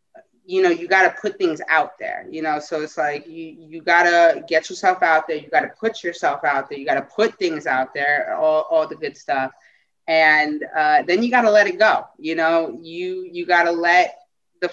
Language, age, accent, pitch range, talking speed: English, 20-39, American, 160-245 Hz, 235 wpm